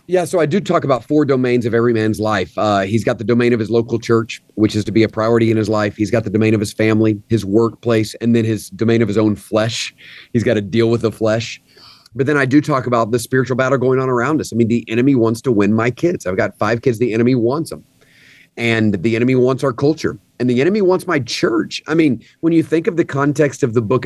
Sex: male